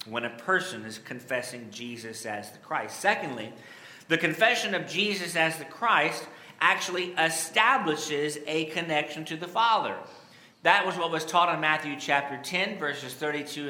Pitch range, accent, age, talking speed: 140-170 Hz, American, 40-59, 155 wpm